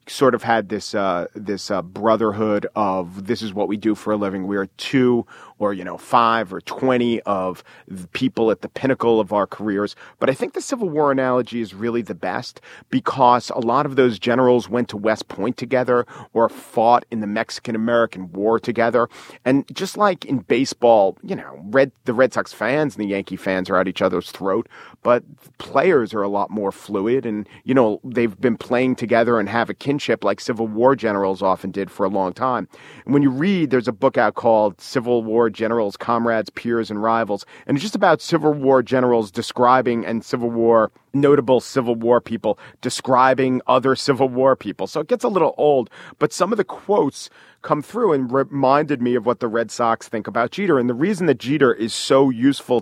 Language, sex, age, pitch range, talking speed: English, male, 40-59, 110-135 Hz, 205 wpm